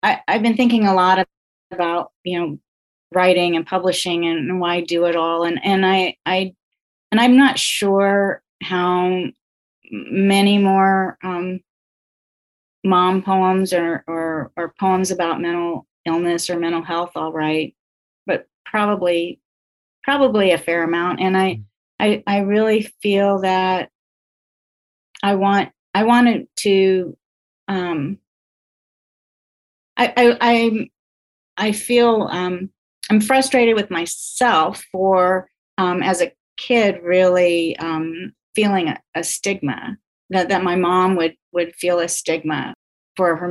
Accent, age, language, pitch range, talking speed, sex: American, 30-49, English, 175-200 Hz, 130 wpm, female